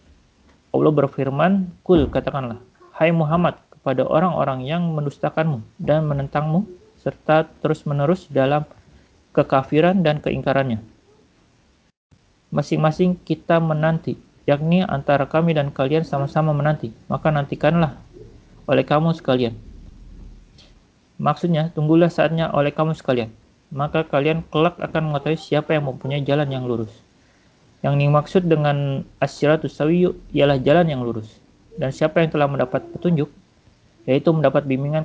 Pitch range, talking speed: 135-160 Hz, 120 wpm